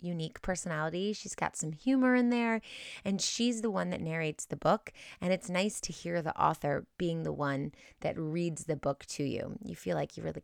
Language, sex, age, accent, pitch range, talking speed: English, female, 30-49, American, 160-215 Hz, 215 wpm